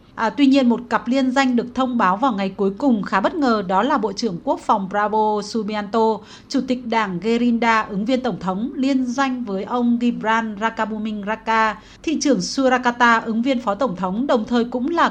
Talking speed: 205 wpm